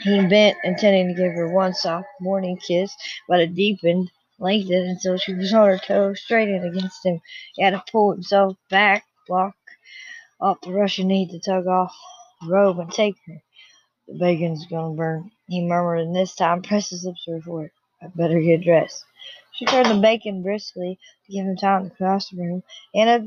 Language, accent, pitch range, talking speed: English, American, 180-215 Hz, 195 wpm